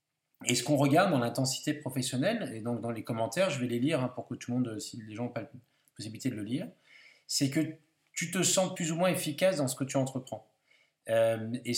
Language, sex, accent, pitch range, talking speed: French, male, French, 125-150 Hz, 230 wpm